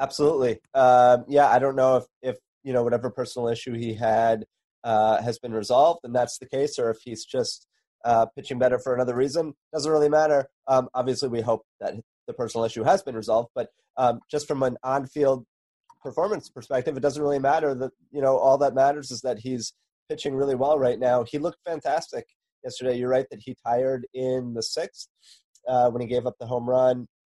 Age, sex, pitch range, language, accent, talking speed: 30-49, male, 120-145 Hz, English, American, 205 wpm